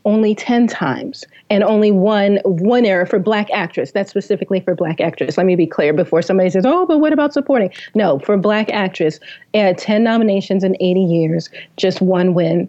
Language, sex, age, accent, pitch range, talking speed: English, female, 30-49, American, 180-205 Hz, 190 wpm